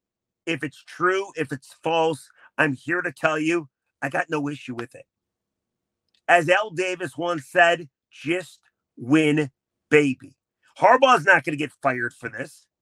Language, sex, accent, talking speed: English, male, American, 155 wpm